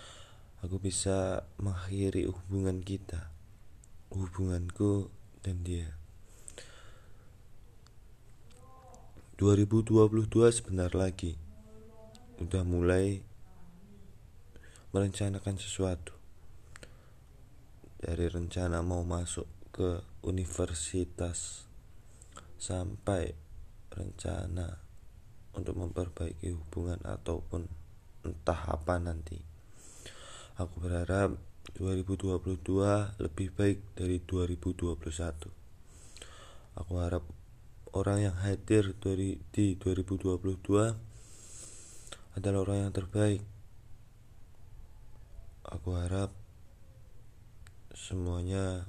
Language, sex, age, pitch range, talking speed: Indonesian, male, 20-39, 90-105 Hz, 65 wpm